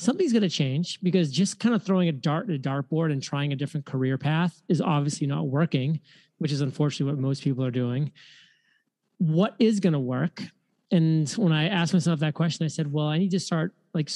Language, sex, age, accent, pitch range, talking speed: English, male, 30-49, American, 140-175 Hz, 220 wpm